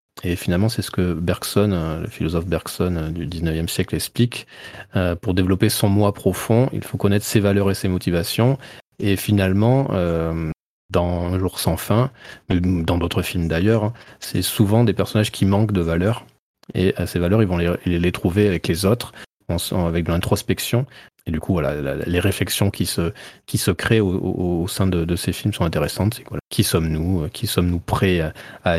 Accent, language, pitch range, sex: French, French, 85-110 Hz, male